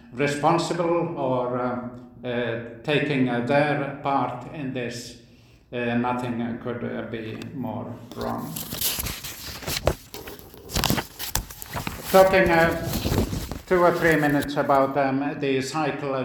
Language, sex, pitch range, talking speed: English, male, 120-145 Hz, 105 wpm